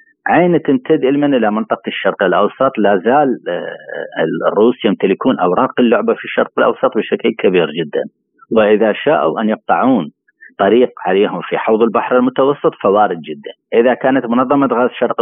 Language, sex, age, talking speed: Arabic, male, 40-59, 140 wpm